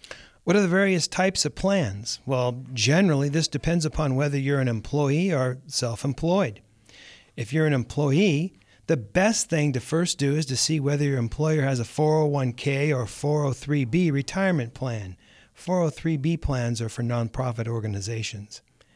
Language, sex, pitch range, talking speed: English, male, 130-170 Hz, 150 wpm